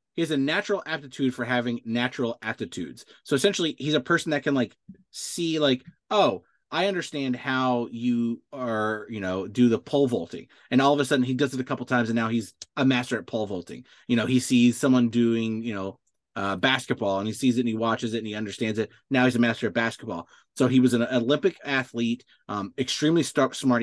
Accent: American